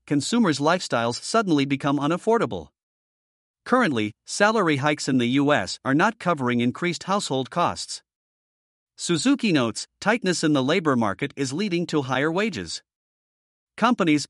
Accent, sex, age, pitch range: American, male, 50-69, 140-185 Hz